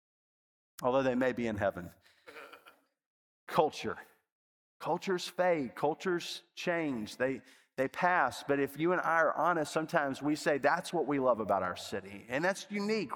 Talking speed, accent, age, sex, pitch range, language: 155 wpm, American, 40-59, male, 135-180 Hz, English